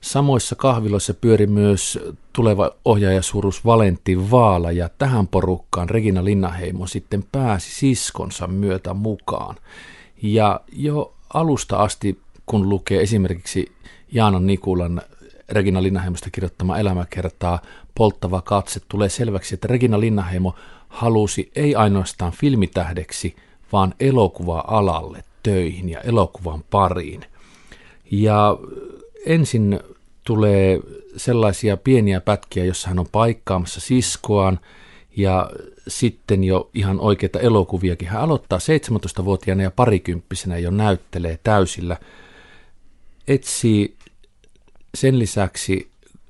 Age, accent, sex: 50-69, native, male